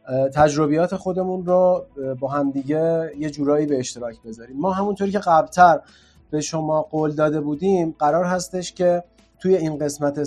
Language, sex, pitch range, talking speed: Persian, male, 145-180 Hz, 145 wpm